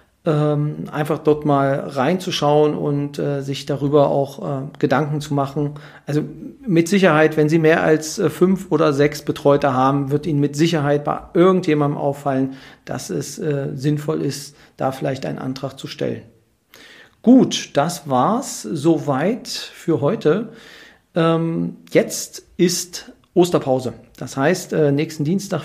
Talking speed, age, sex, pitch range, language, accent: 140 wpm, 40-59, male, 145-160 Hz, German, German